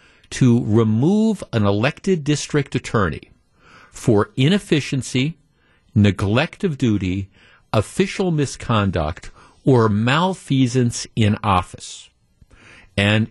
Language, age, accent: English, 50-69, American